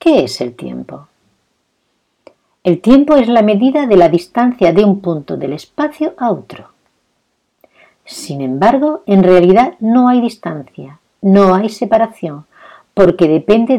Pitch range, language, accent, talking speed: 155-220 Hz, Spanish, Spanish, 135 wpm